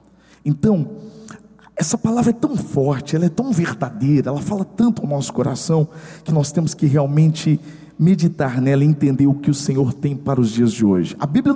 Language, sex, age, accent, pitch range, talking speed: Portuguese, male, 50-69, Brazilian, 120-165 Hz, 190 wpm